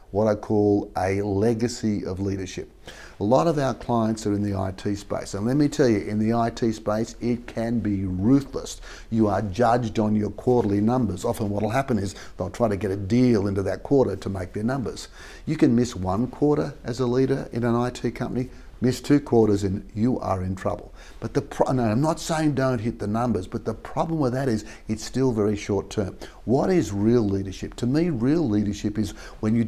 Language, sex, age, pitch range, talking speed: English, male, 50-69, 100-125 Hz, 215 wpm